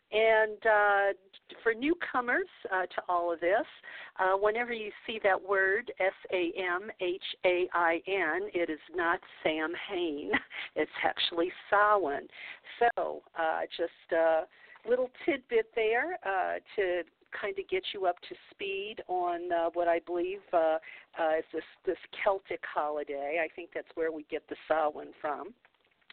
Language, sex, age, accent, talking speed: English, female, 50-69, American, 140 wpm